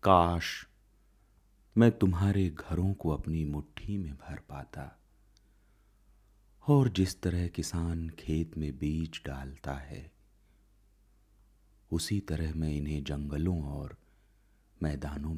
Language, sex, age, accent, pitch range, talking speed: Hindi, male, 30-49, native, 75-105 Hz, 100 wpm